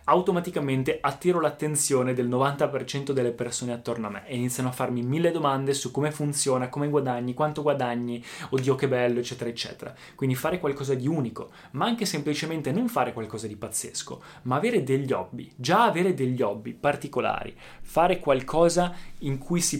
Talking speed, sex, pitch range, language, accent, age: 165 wpm, male, 120-150 Hz, Italian, native, 20-39